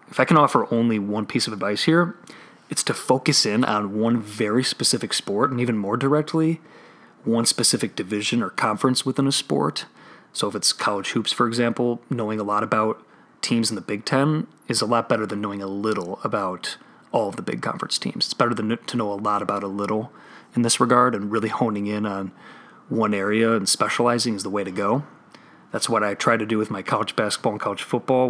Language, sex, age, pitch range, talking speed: English, male, 30-49, 105-125 Hz, 215 wpm